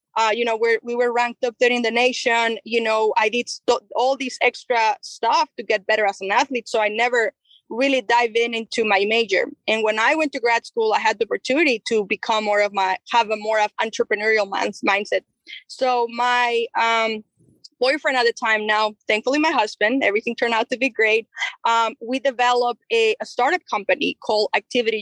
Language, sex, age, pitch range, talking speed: English, female, 20-39, 215-260 Hz, 205 wpm